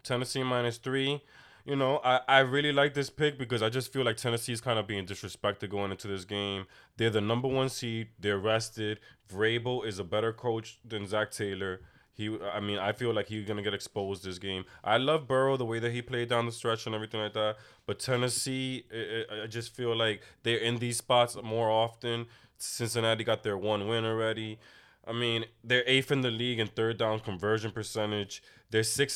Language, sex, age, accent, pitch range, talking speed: English, male, 20-39, American, 100-120 Hz, 210 wpm